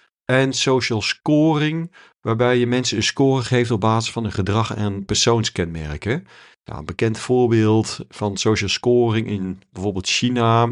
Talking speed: 145 wpm